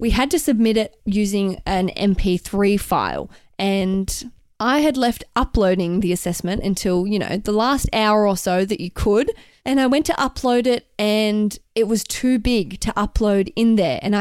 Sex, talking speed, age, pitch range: female, 180 wpm, 20-39, 195-235 Hz